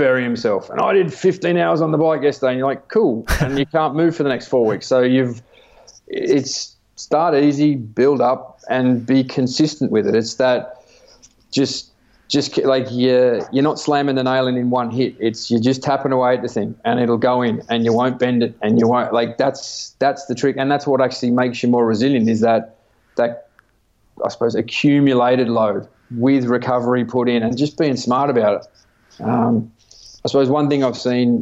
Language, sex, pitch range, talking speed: English, male, 115-130 Hz, 205 wpm